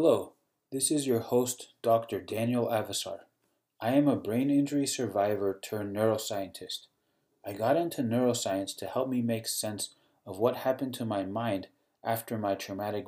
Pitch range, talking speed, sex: 100-125 Hz, 155 wpm, male